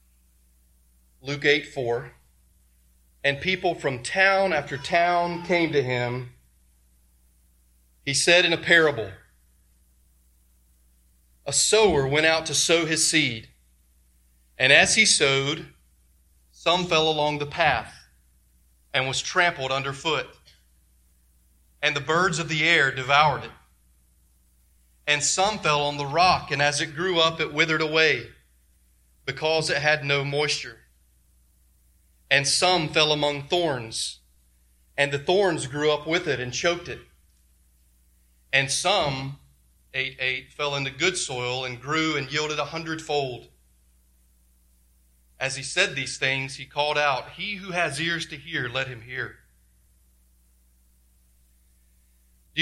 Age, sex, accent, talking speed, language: 30-49, male, American, 125 wpm, English